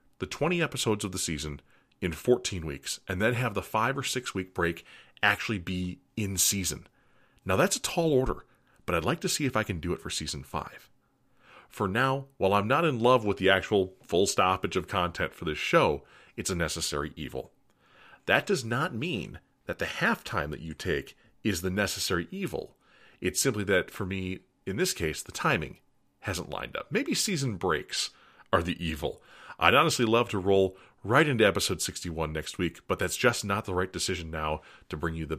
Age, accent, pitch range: 40-59, American, 85-110 Hz